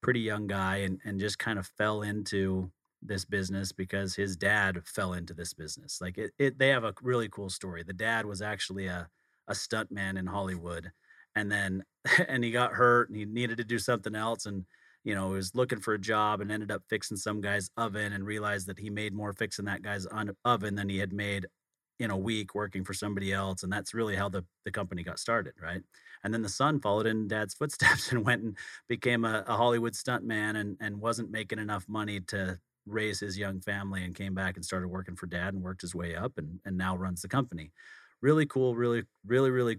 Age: 30-49